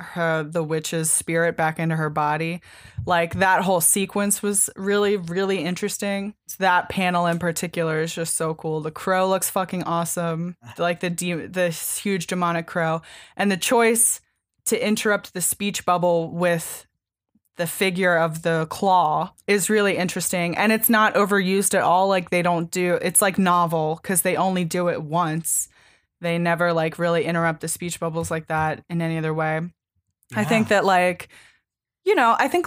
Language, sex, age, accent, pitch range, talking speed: English, female, 20-39, American, 170-205 Hz, 175 wpm